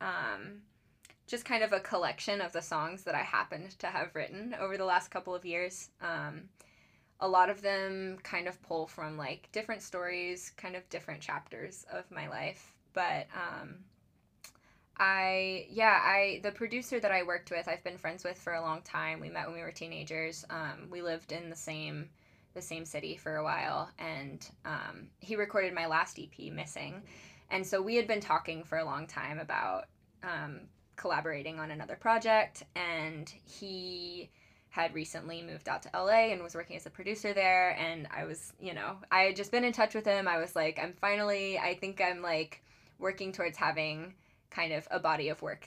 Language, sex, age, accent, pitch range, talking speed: English, female, 10-29, American, 160-195 Hz, 195 wpm